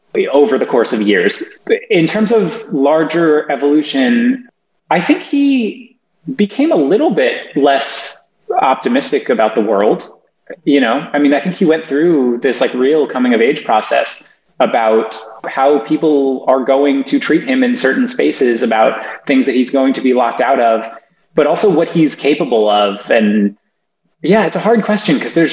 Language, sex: English, male